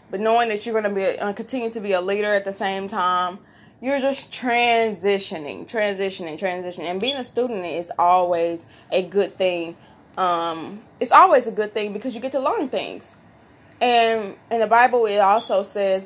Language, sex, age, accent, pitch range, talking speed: English, female, 20-39, American, 190-250 Hz, 185 wpm